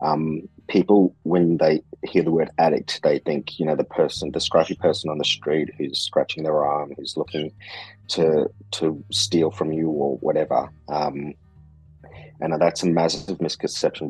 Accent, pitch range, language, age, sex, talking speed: Australian, 80-100 Hz, English, 30-49, male, 165 wpm